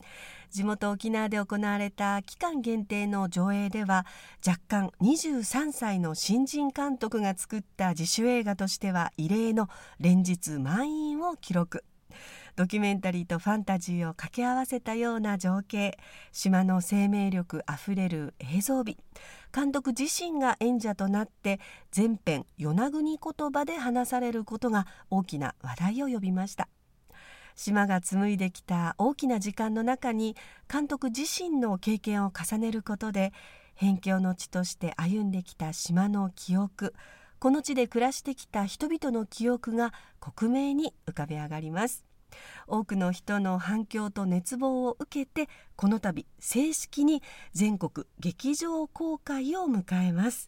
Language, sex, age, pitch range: Japanese, female, 50-69, 185-250 Hz